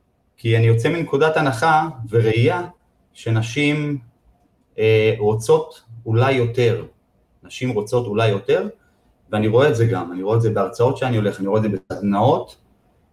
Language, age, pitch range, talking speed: Hebrew, 30-49, 110-140 Hz, 145 wpm